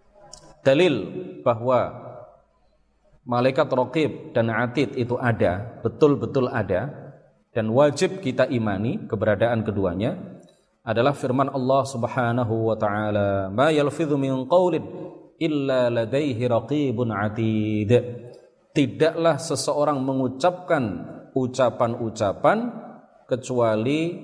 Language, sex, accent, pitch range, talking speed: Indonesian, male, native, 110-140 Hz, 85 wpm